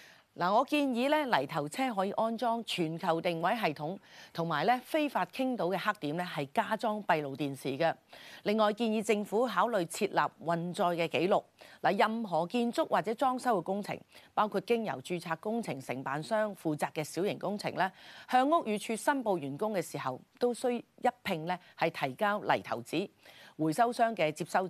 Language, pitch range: Chinese, 160-230 Hz